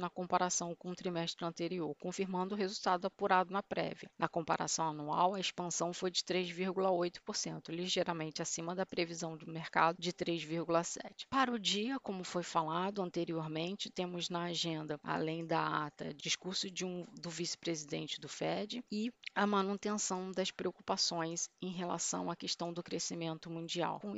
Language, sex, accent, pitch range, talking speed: Portuguese, female, Brazilian, 160-185 Hz, 150 wpm